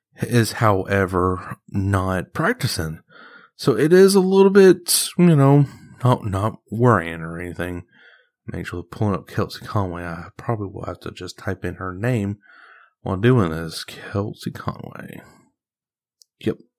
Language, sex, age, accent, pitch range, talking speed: English, male, 30-49, American, 90-120 Hz, 140 wpm